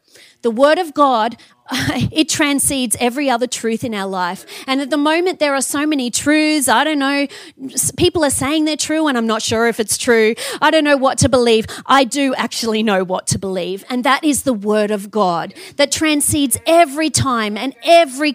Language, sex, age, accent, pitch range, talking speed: English, female, 30-49, Australian, 220-300 Hz, 205 wpm